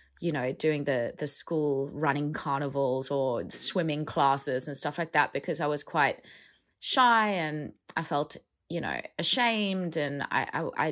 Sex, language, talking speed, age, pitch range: female, English, 160 wpm, 20-39, 155-185 Hz